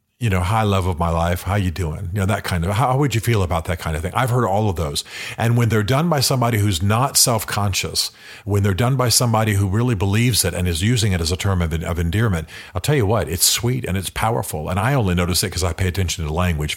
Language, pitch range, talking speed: English, 90-115 Hz, 275 wpm